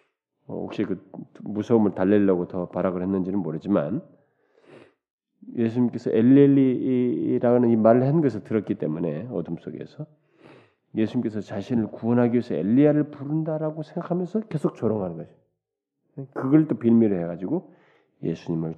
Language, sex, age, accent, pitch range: Korean, male, 40-59, native, 95-150 Hz